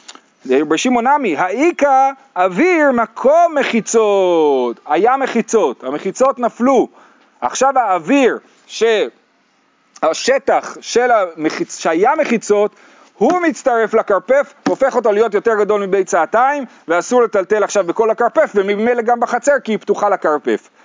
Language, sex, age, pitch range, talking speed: Hebrew, male, 40-59, 175-250 Hz, 110 wpm